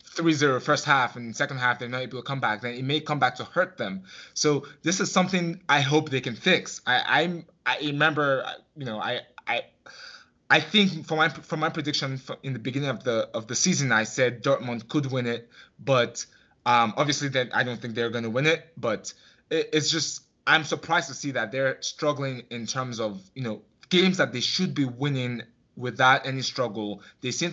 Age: 20-39